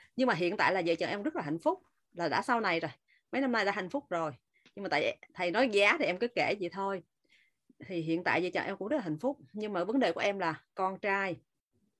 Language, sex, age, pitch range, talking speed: Vietnamese, female, 20-39, 175-250 Hz, 280 wpm